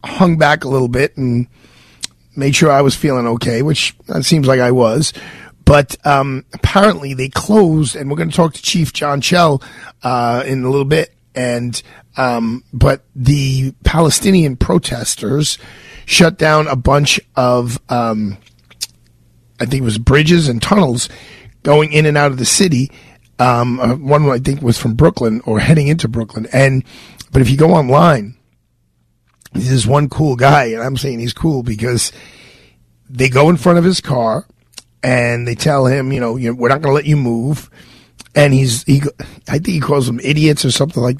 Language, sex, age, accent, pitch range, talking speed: English, male, 40-59, American, 125-155 Hz, 185 wpm